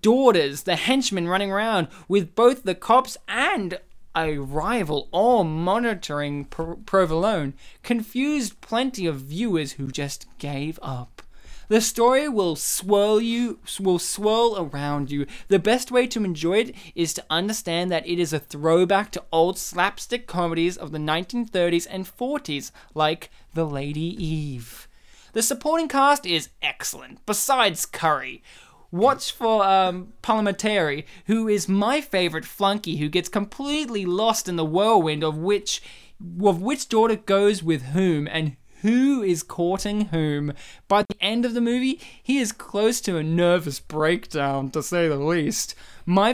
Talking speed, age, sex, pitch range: 145 wpm, 20-39, male, 165-220 Hz